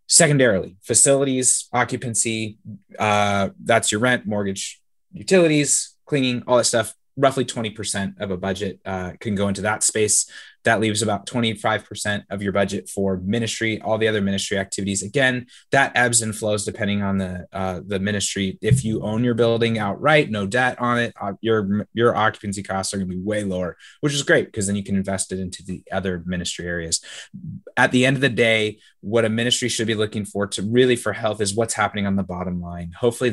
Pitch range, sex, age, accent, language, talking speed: 95-115 Hz, male, 20-39, American, English, 195 wpm